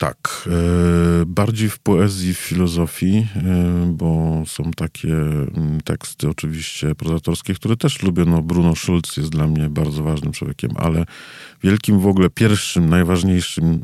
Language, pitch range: Polish, 80-95 Hz